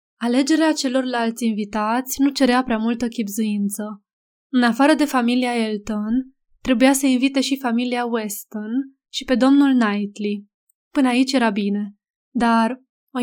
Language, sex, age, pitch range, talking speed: Romanian, female, 20-39, 220-265 Hz, 130 wpm